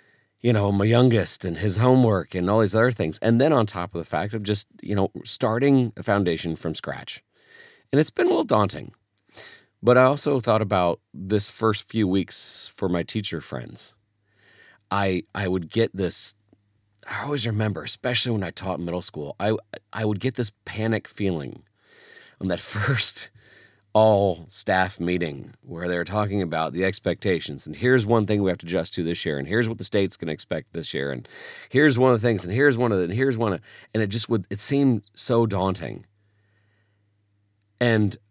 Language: English